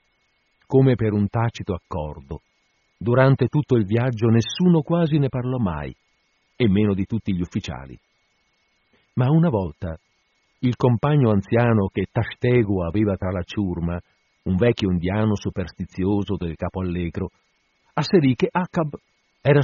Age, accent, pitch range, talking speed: 50-69, native, 95-125 Hz, 130 wpm